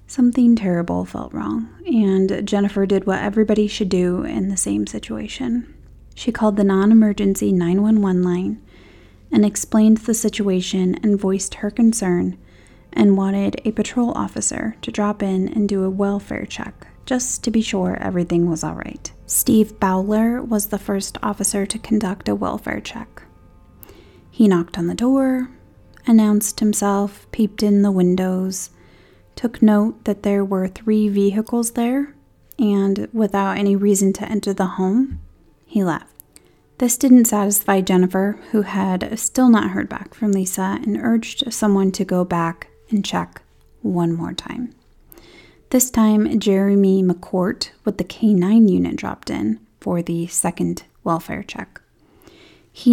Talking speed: 145 wpm